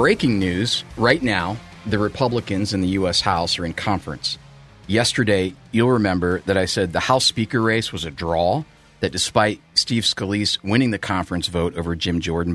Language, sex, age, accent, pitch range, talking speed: English, male, 40-59, American, 85-105 Hz, 175 wpm